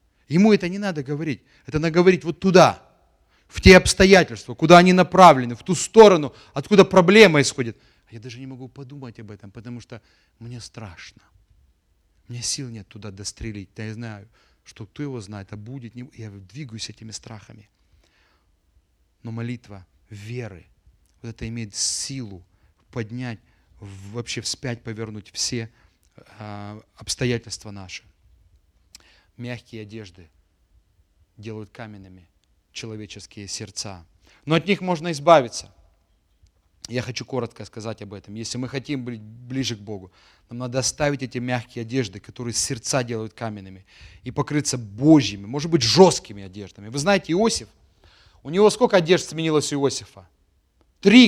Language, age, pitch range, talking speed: English, 30-49, 100-145 Hz, 140 wpm